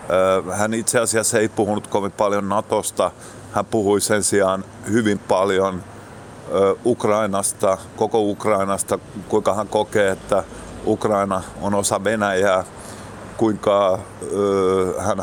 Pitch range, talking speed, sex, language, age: 95-110 Hz, 105 wpm, male, Finnish, 30-49